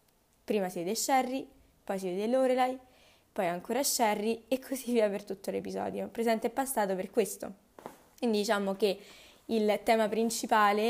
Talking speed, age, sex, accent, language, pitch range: 155 wpm, 20-39, female, native, Italian, 195-240 Hz